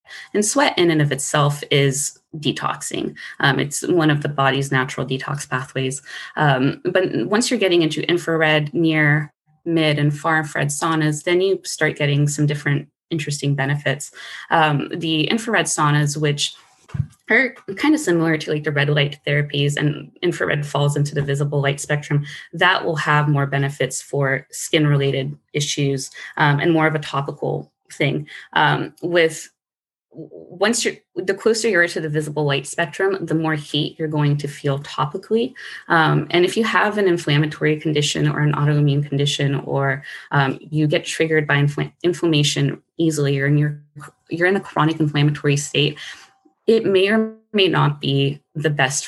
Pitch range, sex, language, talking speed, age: 145-165 Hz, female, English, 165 wpm, 20-39